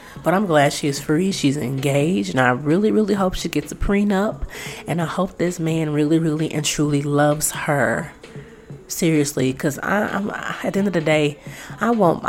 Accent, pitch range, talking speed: American, 145-180 Hz, 195 wpm